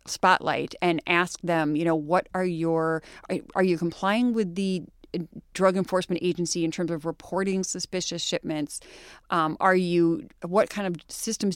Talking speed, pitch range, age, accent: 160 wpm, 170-195 Hz, 30-49, American